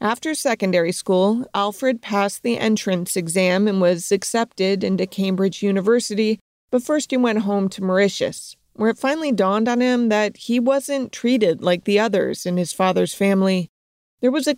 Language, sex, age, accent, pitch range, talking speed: English, female, 40-59, American, 185-235 Hz, 170 wpm